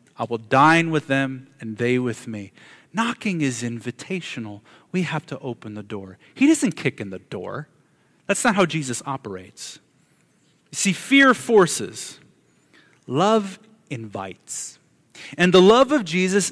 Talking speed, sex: 140 wpm, male